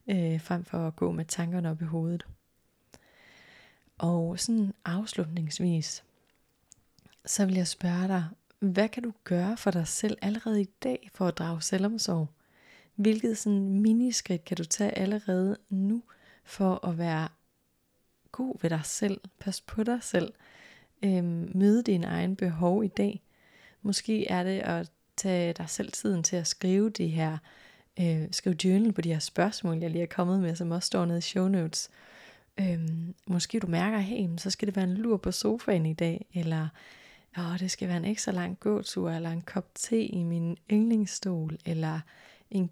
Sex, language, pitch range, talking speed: female, Danish, 170-205 Hz, 175 wpm